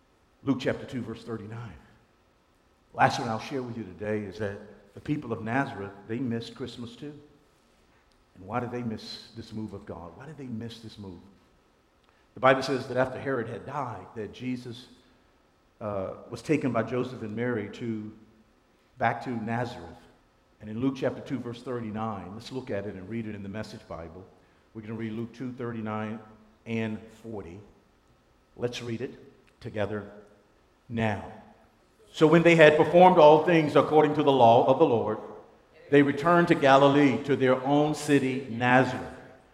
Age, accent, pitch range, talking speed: 50-69, American, 110-145 Hz, 170 wpm